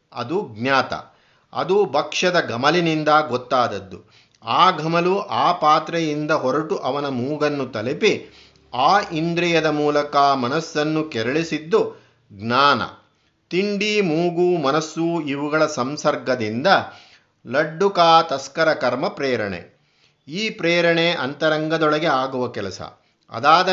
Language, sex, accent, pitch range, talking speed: Kannada, male, native, 135-170 Hz, 90 wpm